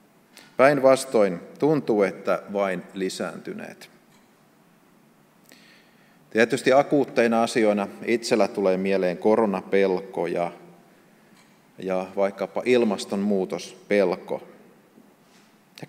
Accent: native